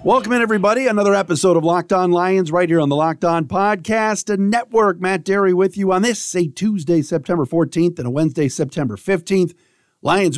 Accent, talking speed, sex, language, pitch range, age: American, 195 wpm, male, English, 135-185 Hz, 40-59